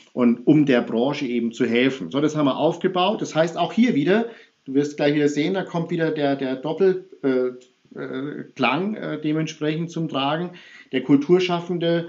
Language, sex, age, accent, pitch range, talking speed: German, male, 50-69, German, 125-170 Hz, 175 wpm